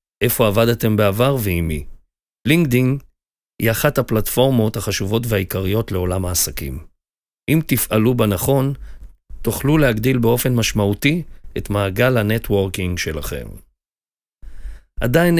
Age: 50-69